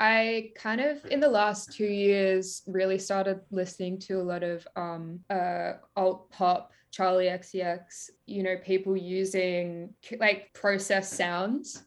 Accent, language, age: Australian, English, 20-39